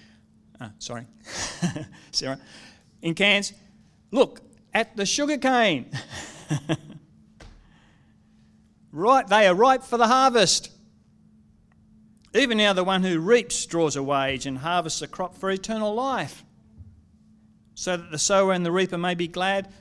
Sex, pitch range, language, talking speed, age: male, 125-185 Hz, English, 135 wpm, 40-59